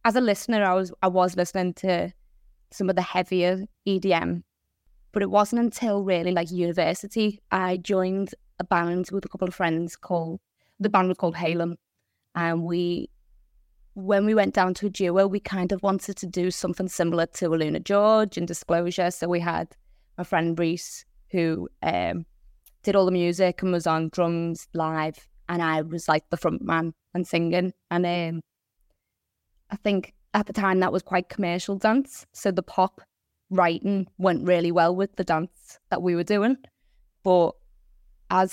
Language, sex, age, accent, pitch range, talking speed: English, female, 20-39, British, 165-190 Hz, 175 wpm